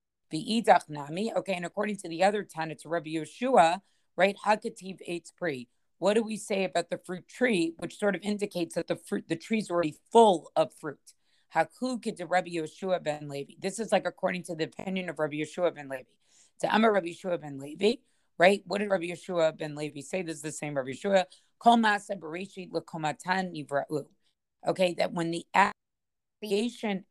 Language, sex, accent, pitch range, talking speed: English, female, American, 165-205 Hz, 180 wpm